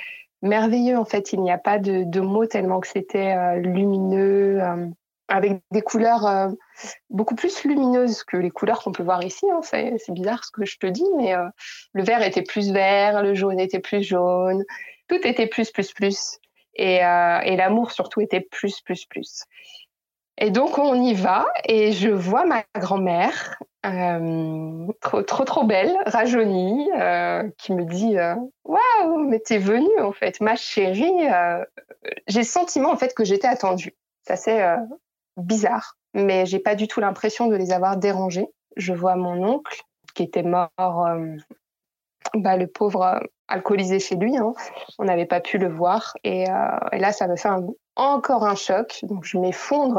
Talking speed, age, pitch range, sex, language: 185 wpm, 20-39, 185-235 Hz, female, French